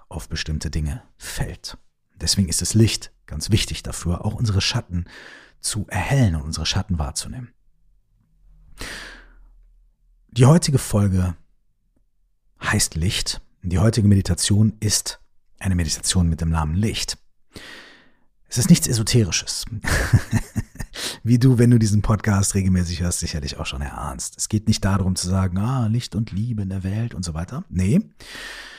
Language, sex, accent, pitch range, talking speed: German, male, German, 90-115 Hz, 140 wpm